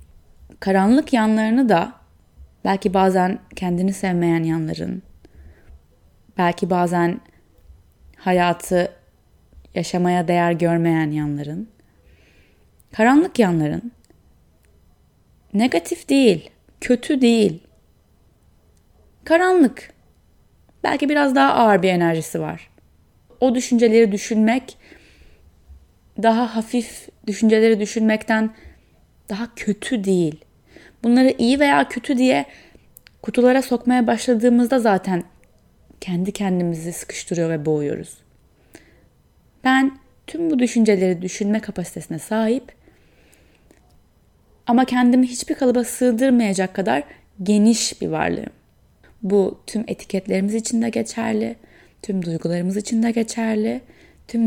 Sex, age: female, 20-39